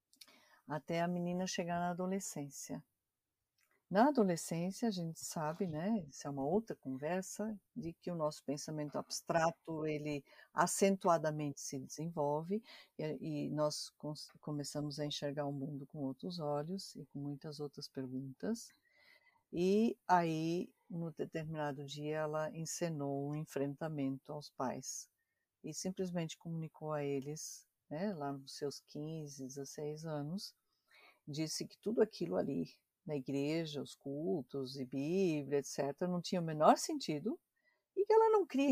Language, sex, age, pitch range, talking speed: Portuguese, female, 50-69, 145-215 Hz, 135 wpm